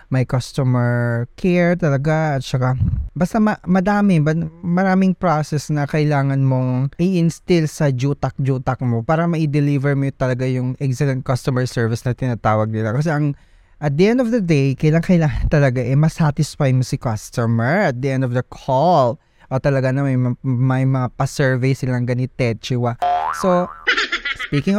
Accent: native